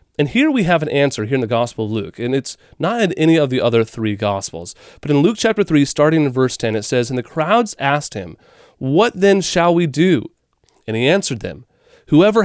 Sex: male